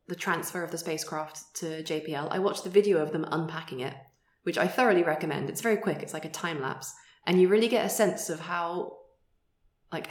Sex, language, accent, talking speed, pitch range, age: female, English, British, 215 wpm, 155-195 Hz, 20-39